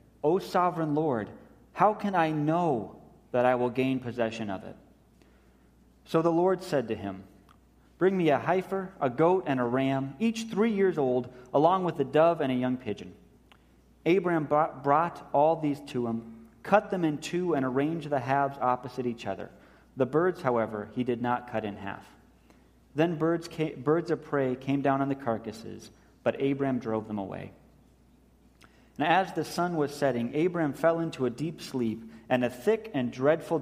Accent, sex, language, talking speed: American, male, English, 175 wpm